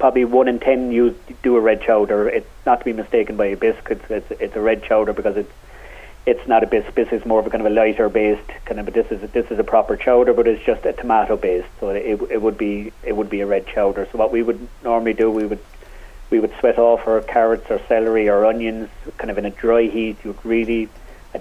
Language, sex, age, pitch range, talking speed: English, male, 30-49, 110-120 Hz, 260 wpm